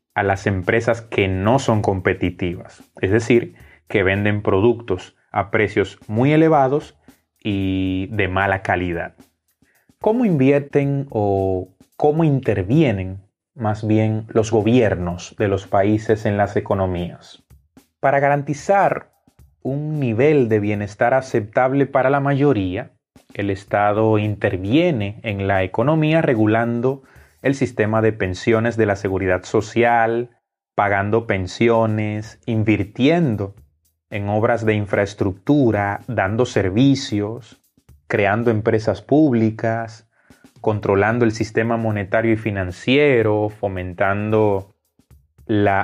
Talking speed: 105 wpm